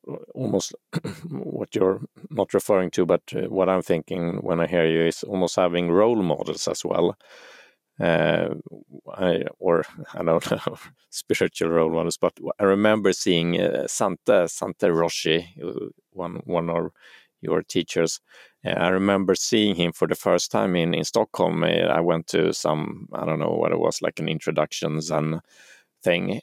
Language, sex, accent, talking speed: Swedish, male, Norwegian, 160 wpm